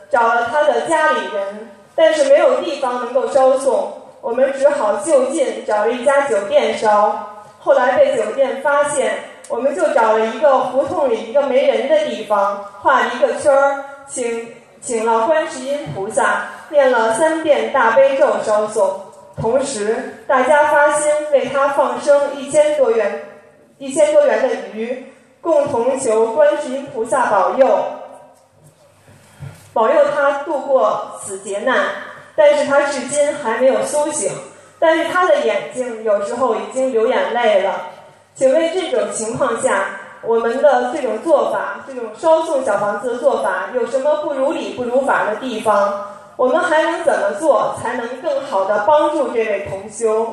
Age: 20-39